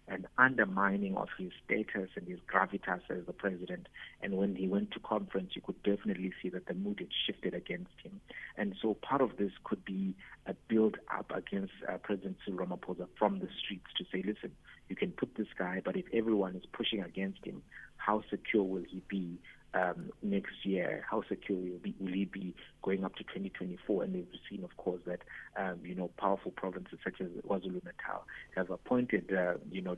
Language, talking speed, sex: English, 200 wpm, male